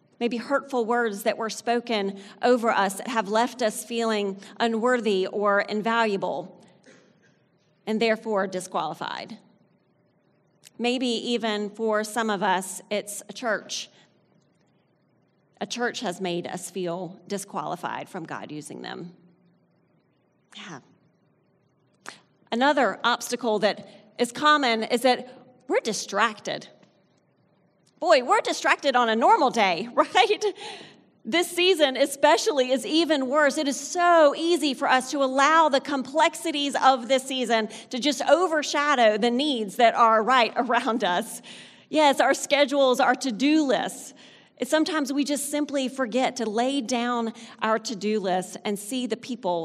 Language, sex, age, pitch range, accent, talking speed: English, female, 40-59, 205-275 Hz, American, 130 wpm